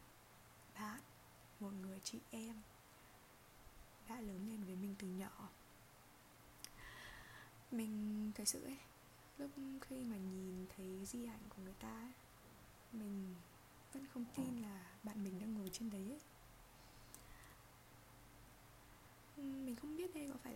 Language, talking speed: Vietnamese, 130 wpm